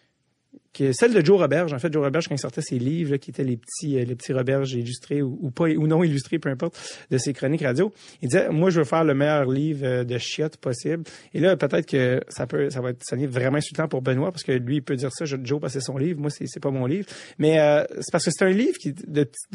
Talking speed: 270 wpm